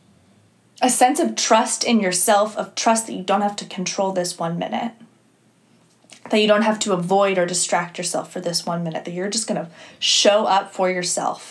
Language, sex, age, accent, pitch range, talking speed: English, female, 20-39, American, 185-220 Hz, 205 wpm